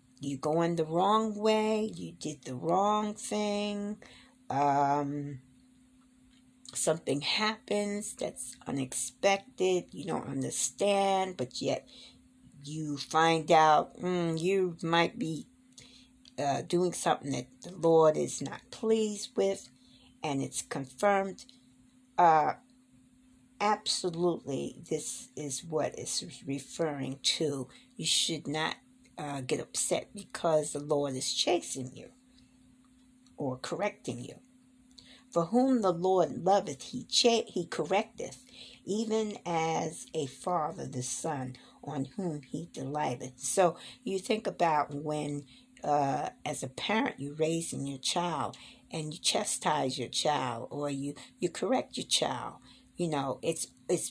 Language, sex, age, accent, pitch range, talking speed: English, female, 50-69, American, 140-210 Hz, 125 wpm